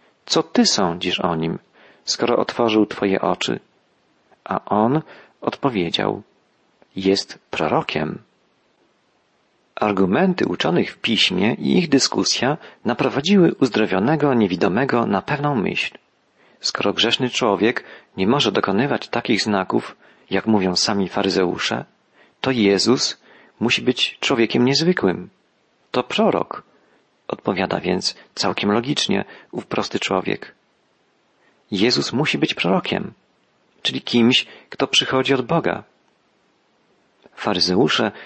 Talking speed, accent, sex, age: 100 wpm, native, male, 40-59